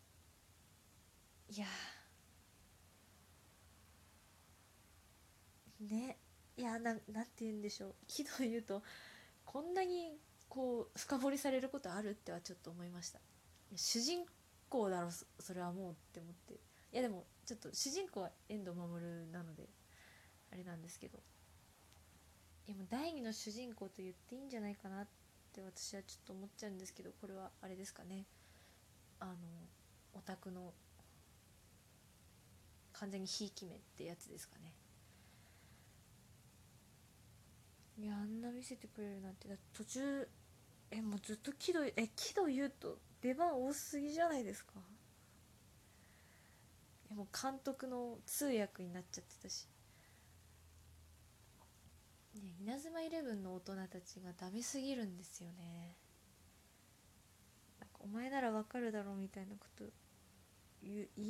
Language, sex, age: Japanese, female, 20-39